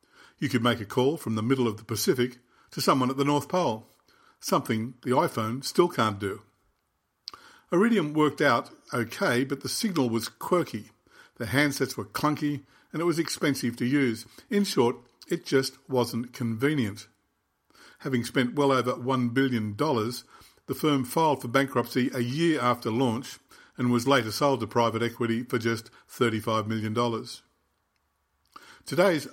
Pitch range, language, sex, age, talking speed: 115-140 Hz, English, male, 50-69, 155 wpm